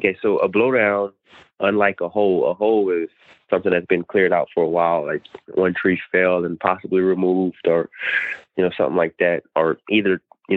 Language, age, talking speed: English, 20-39, 195 wpm